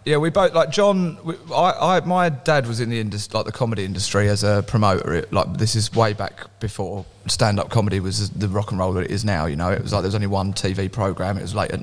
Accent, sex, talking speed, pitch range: British, male, 275 wpm, 100-125 Hz